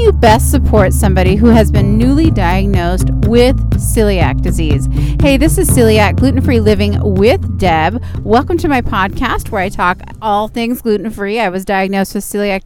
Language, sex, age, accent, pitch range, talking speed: English, female, 30-49, American, 195-245 Hz, 165 wpm